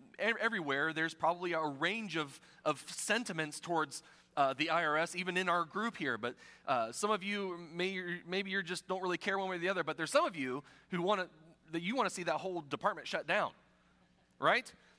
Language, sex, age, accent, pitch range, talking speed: English, male, 30-49, American, 130-210 Hz, 205 wpm